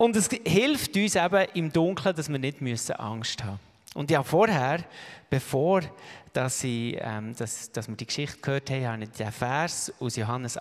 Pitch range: 130-185 Hz